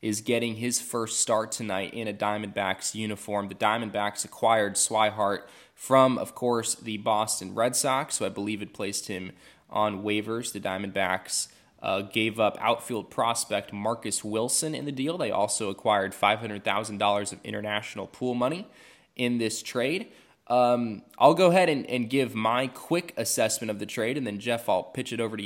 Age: 20-39